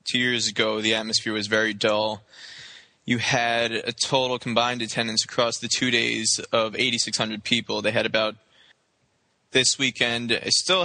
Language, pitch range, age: English, 110-125 Hz, 20-39